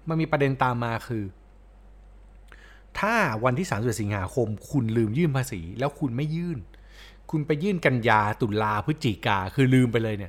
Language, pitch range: Thai, 105-145 Hz